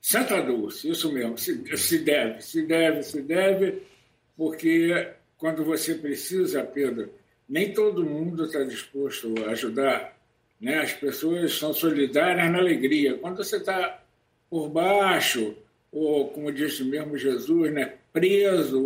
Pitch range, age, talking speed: 145-195 Hz, 60-79, 130 wpm